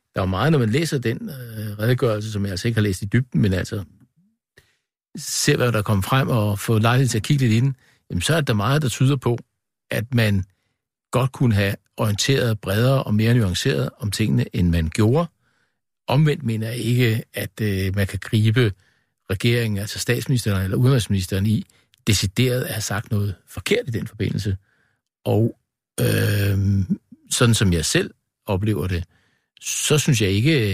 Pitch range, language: 100-130 Hz, Danish